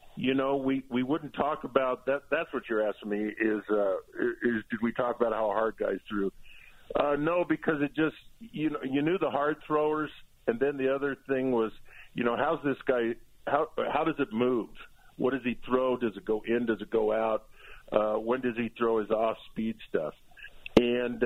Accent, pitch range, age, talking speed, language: American, 115-140 Hz, 50-69, 210 wpm, English